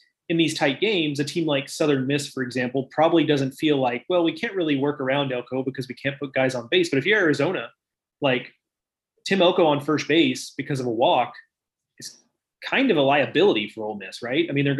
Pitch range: 130-155 Hz